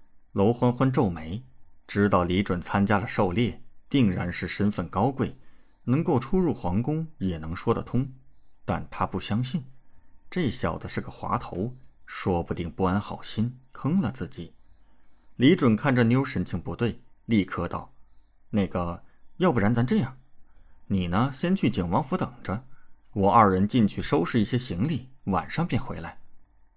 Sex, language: male, Chinese